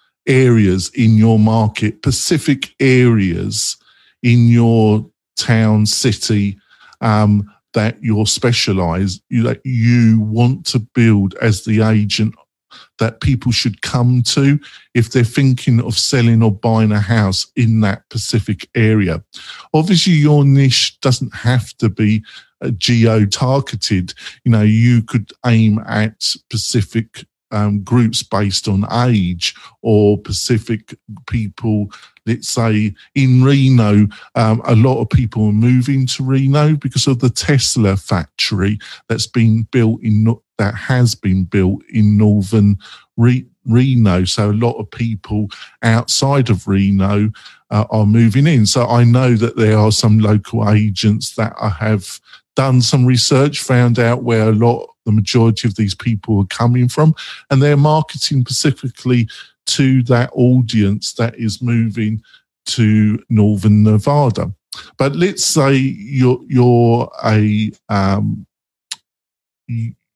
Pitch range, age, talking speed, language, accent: 105-125 Hz, 50-69, 135 wpm, English, British